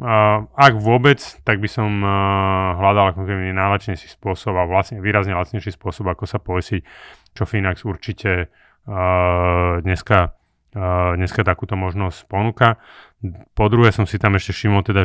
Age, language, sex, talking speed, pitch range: 30-49, Slovak, male, 145 wpm, 90-105 Hz